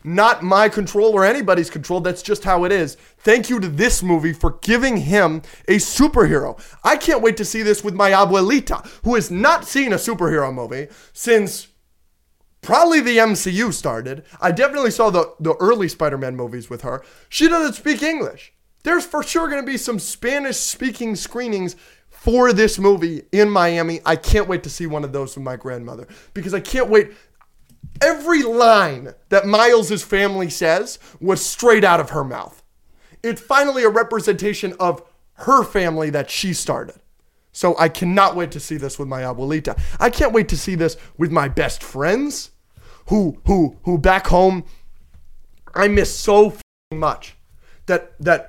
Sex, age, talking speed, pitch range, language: male, 20-39, 170 wpm, 165-225 Hz, English